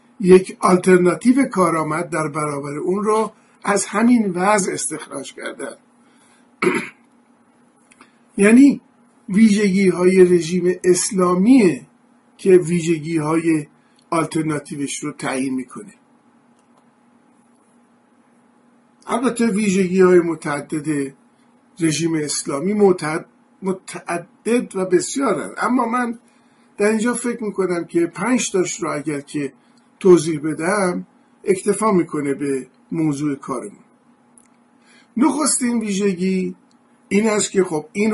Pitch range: 170-250 Hz